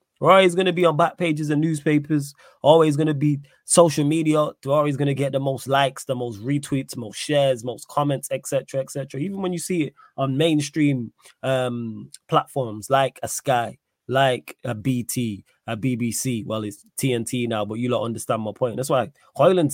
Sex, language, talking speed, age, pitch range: male, English, 195 wpm, 20-39, 120-145 Hz